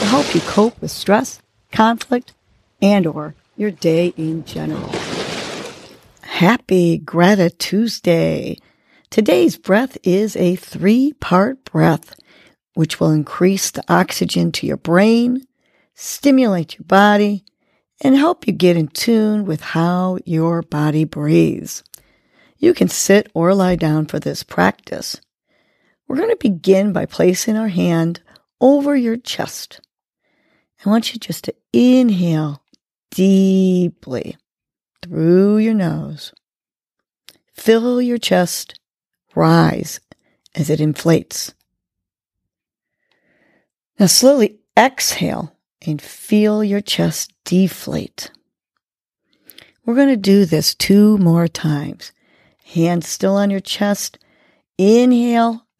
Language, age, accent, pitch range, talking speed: English, 50-69, American, 165-225 Hz, 110 wpm